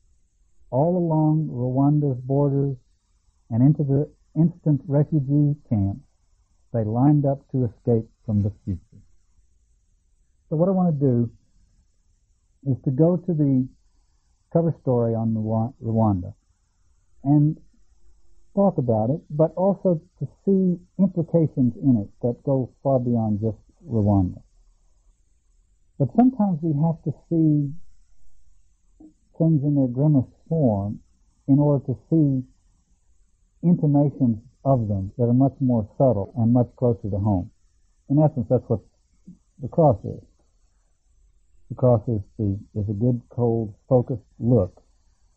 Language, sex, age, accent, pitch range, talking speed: English, male, 60-79, American, 95-145 Hz, 125 wpm